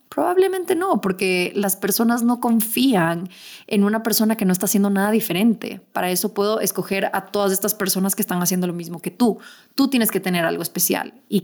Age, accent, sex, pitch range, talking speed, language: 20-39, Mexican, female, 180-210 Hz, 200 wpm, Spanish